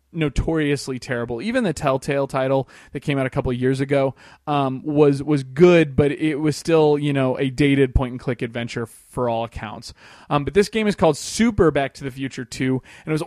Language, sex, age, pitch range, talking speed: English, male, 20-39, 130-160 Hz, 215 wpm